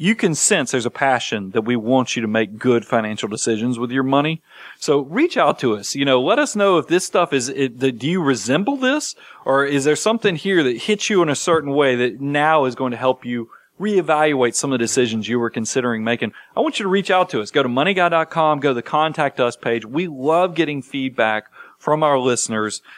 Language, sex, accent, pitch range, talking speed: English, male, American, 120-160 Hz, 230 wpm